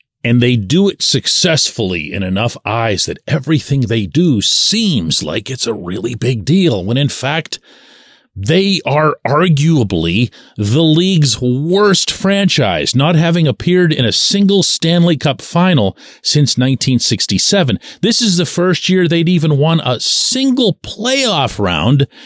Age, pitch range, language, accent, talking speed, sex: 40-59, 115-175 Hz, English, American, 140 wpm, male